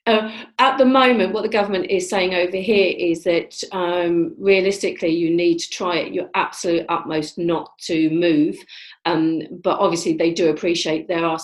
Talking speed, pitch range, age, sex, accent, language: 180 wpm, 155-175 Hz, 40-59, female, British, English